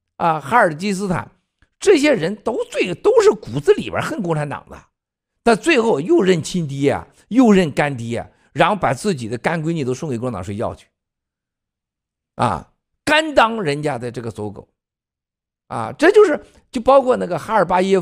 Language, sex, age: Chinese, male, 50-69